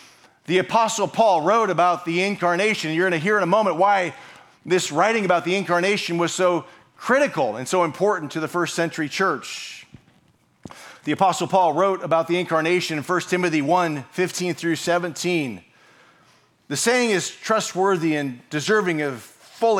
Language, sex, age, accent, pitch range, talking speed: English, male, 40-59, American, 155-190 Hz, 160 wpm